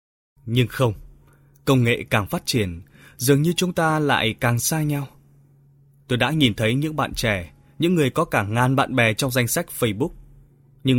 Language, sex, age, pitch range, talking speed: Vietnamese, male, 20-39, 105-140 Hz, 185 wpm